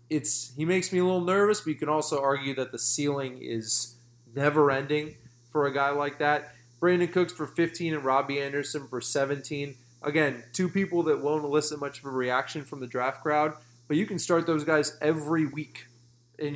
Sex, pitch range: male, 125-150 Hz